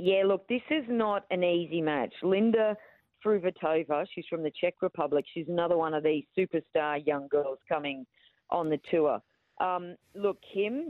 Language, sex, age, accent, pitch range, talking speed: English, female, 40-59, Australian, 150-190 Hz, 165 wpm